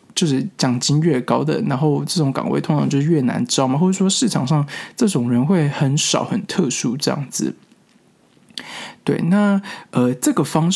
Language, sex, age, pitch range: Chinese, male, 20-39, 140-190 Hz